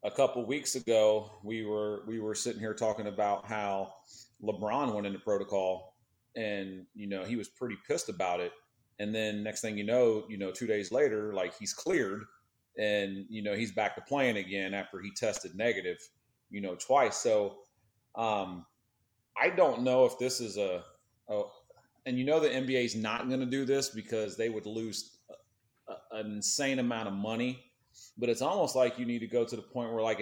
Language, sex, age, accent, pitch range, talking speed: English, male, 30-49, American, 105-130 Hz, 200 wpm